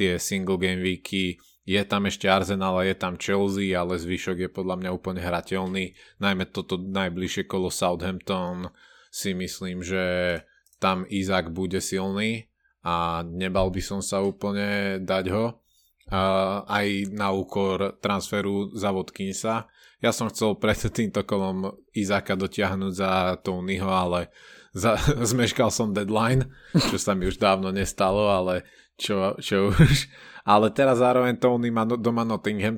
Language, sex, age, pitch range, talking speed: Slovak, male, 20-39, 90-105 Hz, 140 wpm